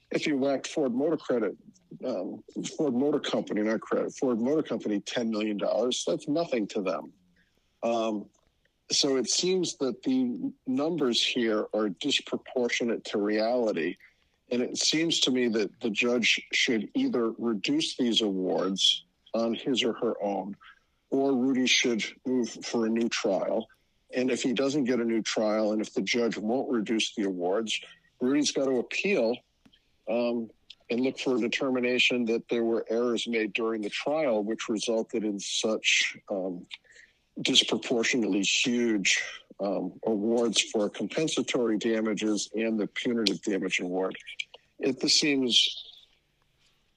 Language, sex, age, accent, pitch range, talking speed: English, male, 50-69, American, 110-130 Hz, 145 wpm